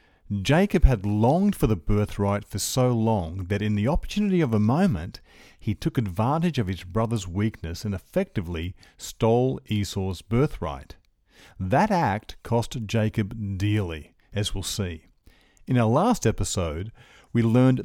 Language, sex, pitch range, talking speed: English, male, 100-130 Hz, 140 wpm